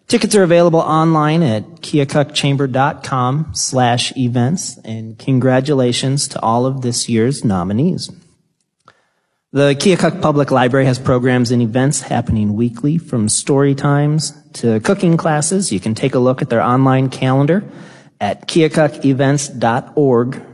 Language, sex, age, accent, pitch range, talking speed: English, male, 30-49, American, 125-155 Hz, 125 wpm